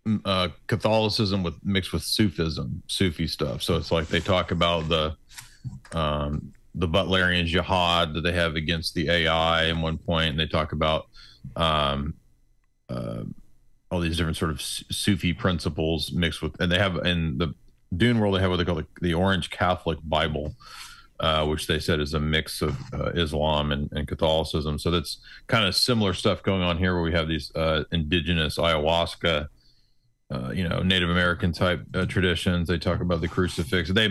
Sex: male